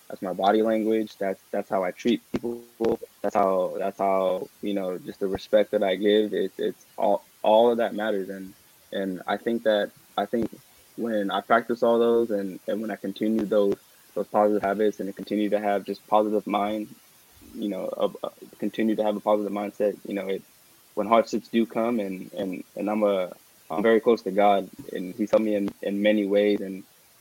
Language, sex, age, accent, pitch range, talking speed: English, male, 20-39, American, 100-110 Hz, 205 wpm